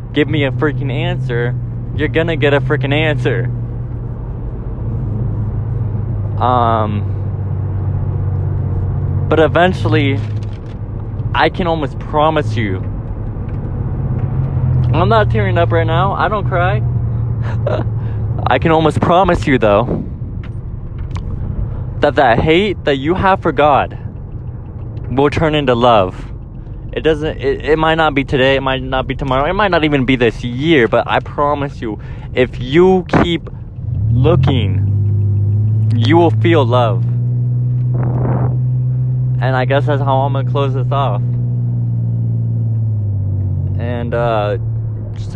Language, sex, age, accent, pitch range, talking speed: English, male, 20-39, American, 110-130 Hz, 120 wpm